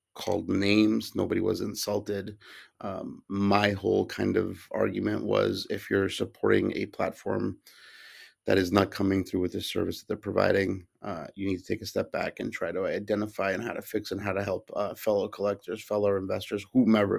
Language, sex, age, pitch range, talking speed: English, male, 30-49, 95-105 Hz, 190 wpm